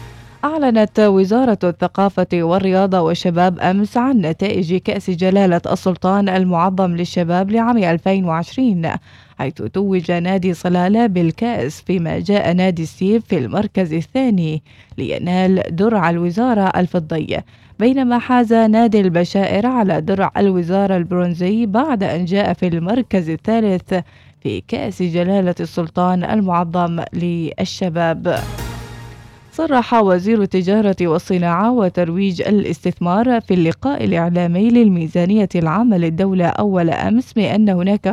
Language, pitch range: Arabic, 175-205 Hz